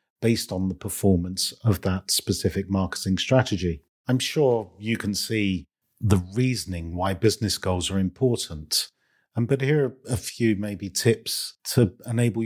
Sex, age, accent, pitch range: male, 50-69, British, 95-125 Hz